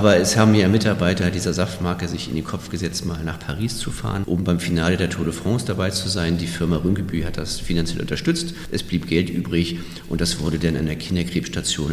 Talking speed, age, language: 225 wpm, 50-69, German